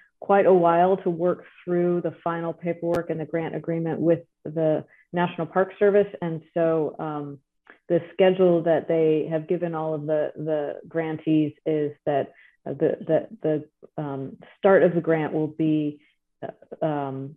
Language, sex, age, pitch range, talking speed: English, female, 30-49, 155-180 Hz, 150 wpm